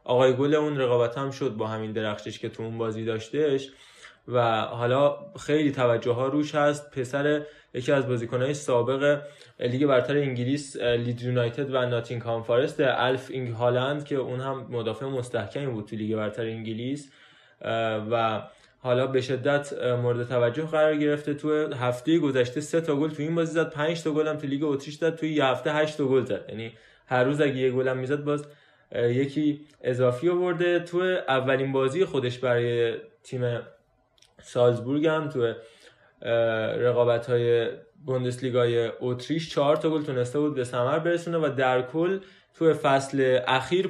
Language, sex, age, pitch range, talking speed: Persian, male, 20-39, 120-150 Hz, 155 wpm